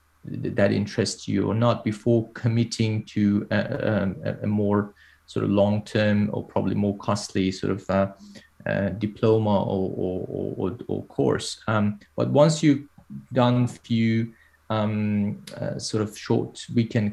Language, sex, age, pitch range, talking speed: English, male, 30-49, 100-115 Hz, 145 wpm